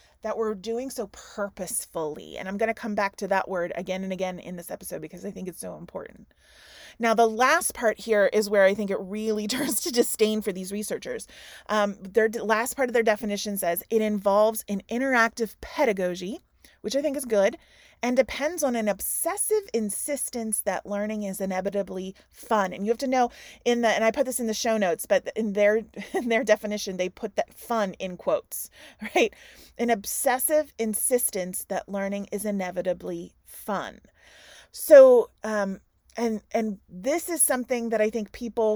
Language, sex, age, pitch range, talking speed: English, female, 30-49, 195-235 Hz, 185 wpm